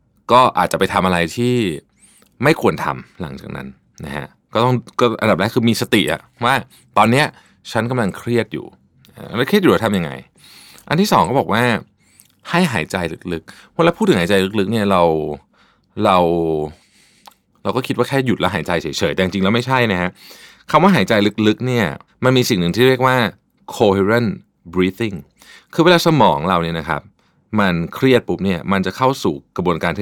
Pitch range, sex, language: 90-125 Hz, male, Thai